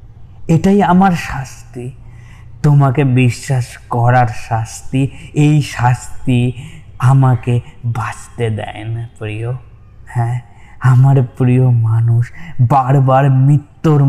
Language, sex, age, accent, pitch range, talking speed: Bengali, male, 20-39, native, 115-135 Hz, 60 wpm